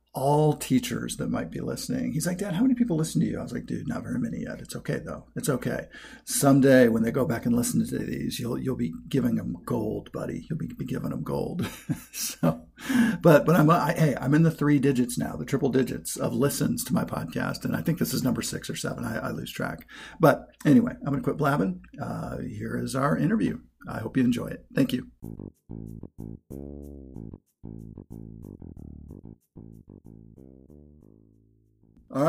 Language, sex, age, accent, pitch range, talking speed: English, male, 50-69, American, 105-140 Hz, 190 wpm